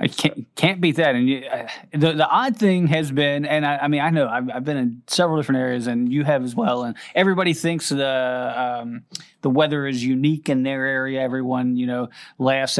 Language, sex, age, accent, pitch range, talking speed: English, male, 30-49, American, 130-165 Hz, 225 wpm